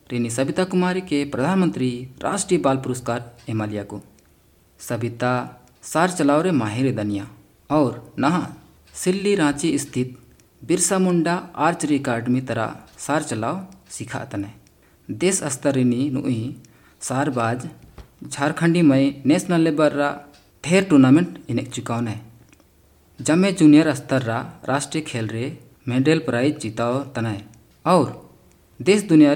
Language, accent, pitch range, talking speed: English, Indian, 115-155 Hz, 110 wpm